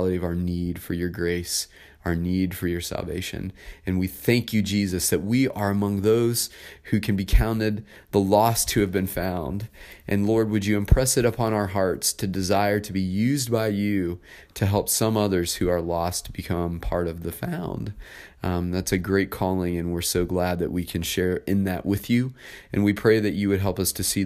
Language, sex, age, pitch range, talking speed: English, male, 30-49, 85-100 Hz, 215 wpm